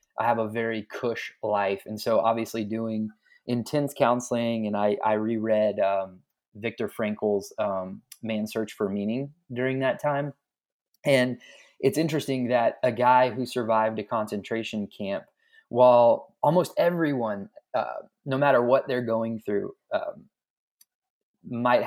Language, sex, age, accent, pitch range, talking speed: English, male, 20-39, American, 110-135 Hz, 135 wpm